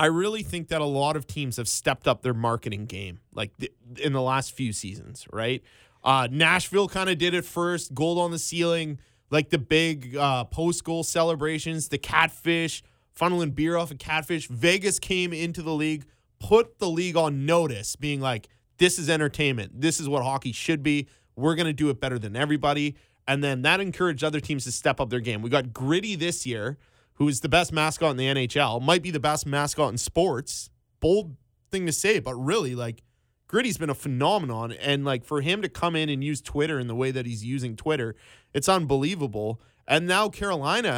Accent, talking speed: American, 205 wpm